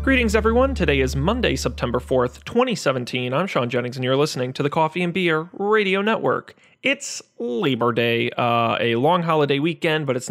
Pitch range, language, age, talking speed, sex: 125-170 Hz, English, 30-49, 180 wpm, male